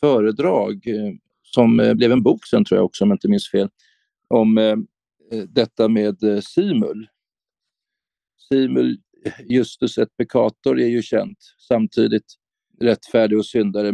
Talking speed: 125 wpm